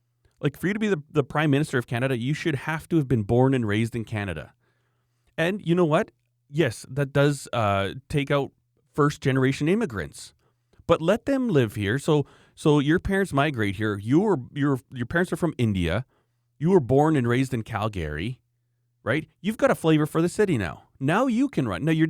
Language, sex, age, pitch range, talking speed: English, male, 30-49, 115-150 Hz, 205 wpm